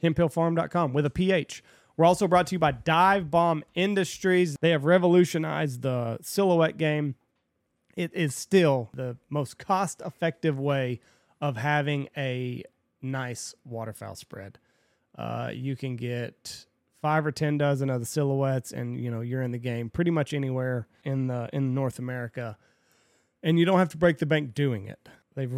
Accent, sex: American, male